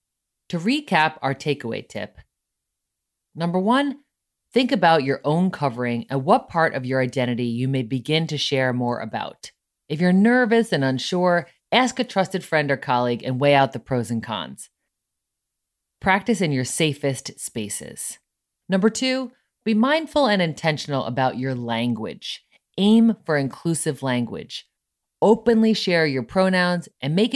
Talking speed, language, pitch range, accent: 145 wpm, English, 135-195 Hz, American